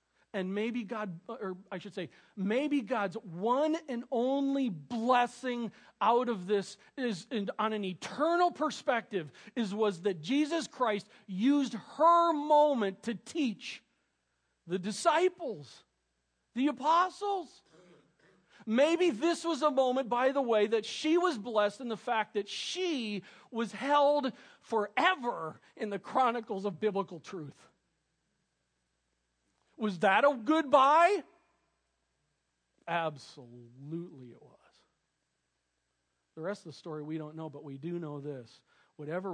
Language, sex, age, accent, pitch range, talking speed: English, male, 40-59, American, 175-275 Hz, 125 wpm